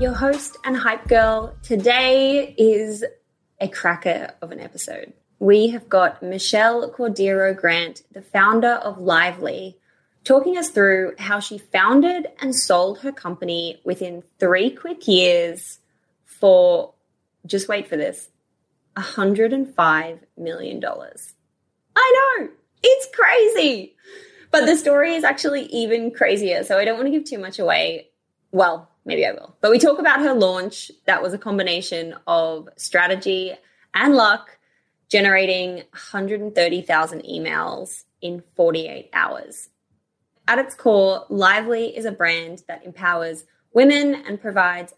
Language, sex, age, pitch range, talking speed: English, female, 20-39, 180-255 Hz, 130 wpm